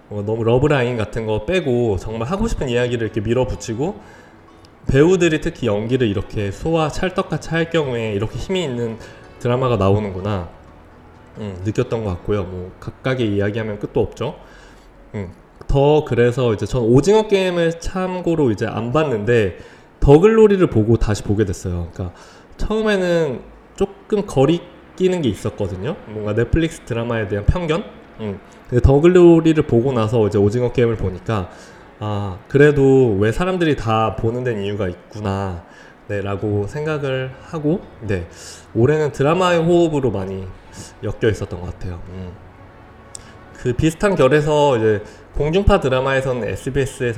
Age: 20-39